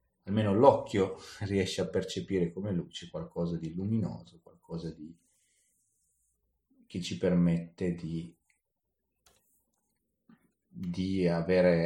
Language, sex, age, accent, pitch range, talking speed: Italian, male, 30-49, native, 85-100 Hz, 90 wpm